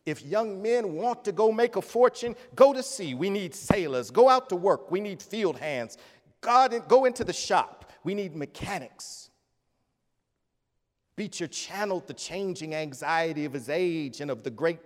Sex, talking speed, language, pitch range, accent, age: male, 170 wpm, English, 145-195 Hz, American, 40-59